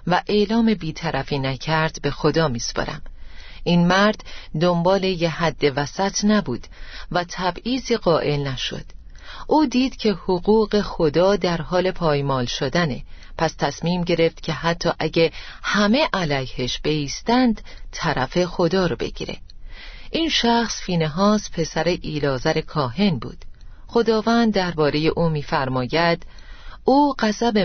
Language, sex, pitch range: Persian, female, 155-205 Hz